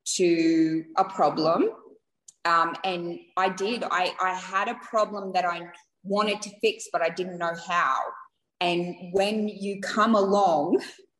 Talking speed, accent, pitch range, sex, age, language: 145 wpm, Australian, 175-210 Hz, female, 20-39, English